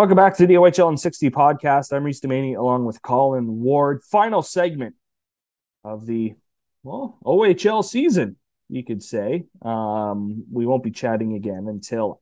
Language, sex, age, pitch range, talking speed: English, male, 30-49, 110-170 Hz, 155 wpm